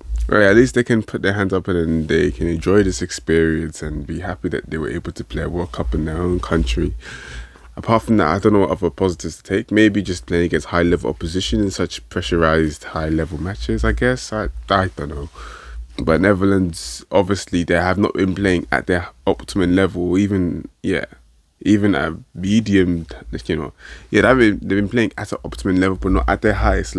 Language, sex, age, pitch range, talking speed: English, male, 20-39, 75-100 Hz, 205 wpm